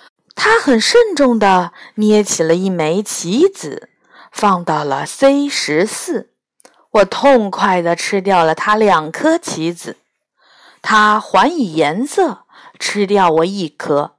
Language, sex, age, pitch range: Chinese, female, 50-69, 185-285 Hz